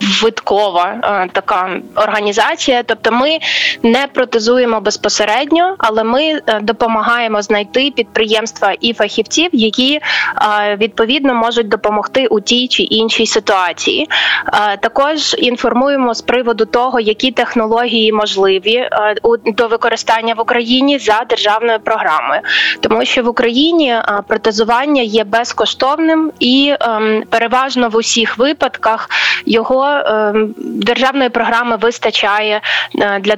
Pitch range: 215-255 Hz